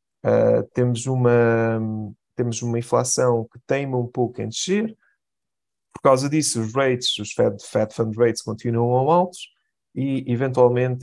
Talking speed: 130 wpm